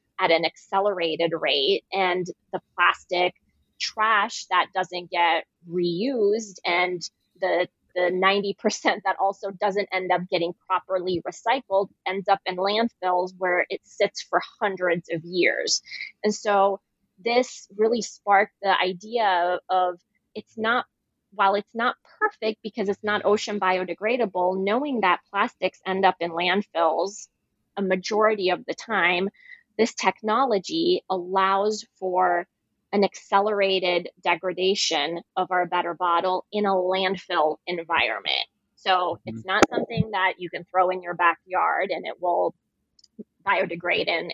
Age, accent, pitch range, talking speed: 20-39, American, 180-205 Hz, 130 wpm